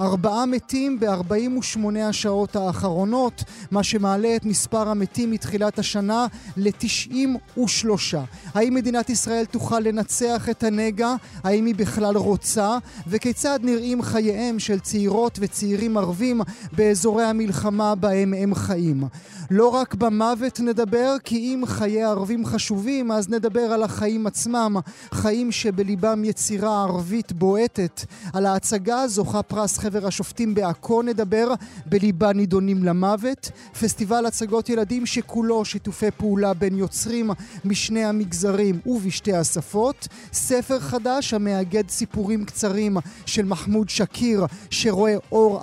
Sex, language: male, Hebrew